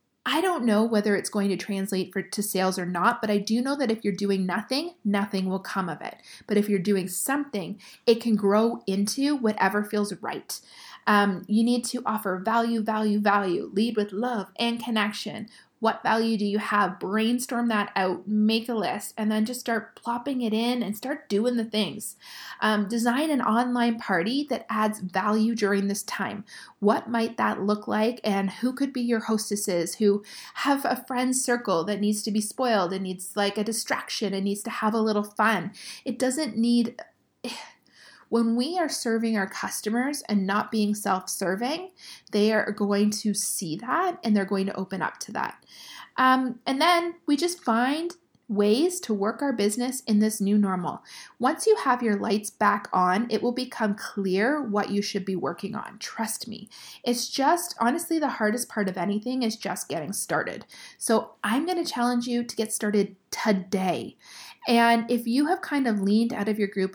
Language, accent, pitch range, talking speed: English, American, 205-240 Hz, 190 wpm